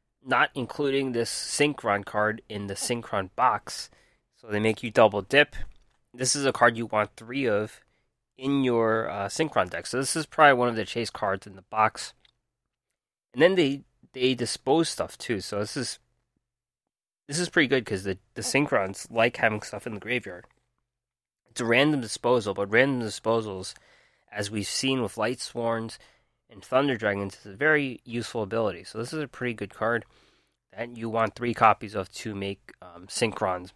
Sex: male